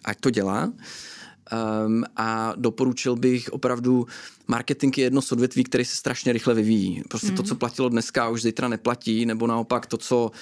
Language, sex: Slovak, male